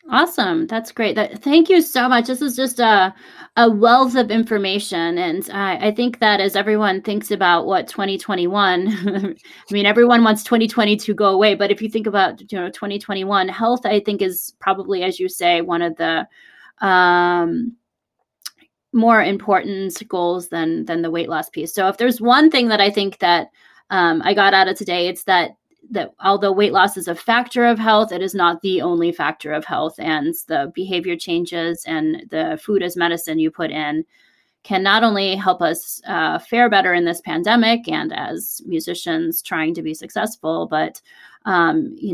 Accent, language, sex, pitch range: American, English, female, 175-240 Hz